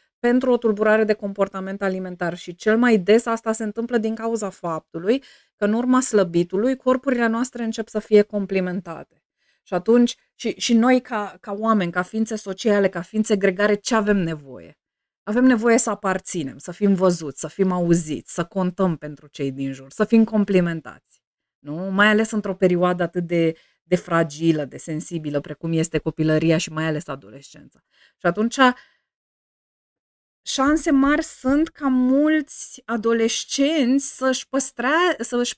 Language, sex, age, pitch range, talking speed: Romanian, female, 20-39, 185-245 Hz, 150 wpm